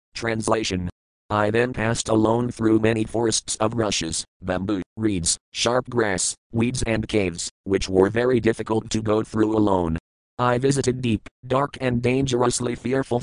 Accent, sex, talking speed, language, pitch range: American, male, 145 wpm, English, 100-120 Hz